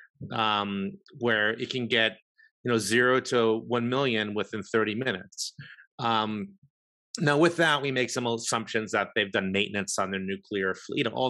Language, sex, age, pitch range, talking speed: English, male, 30-49, 110-170 Hz, 175 wpm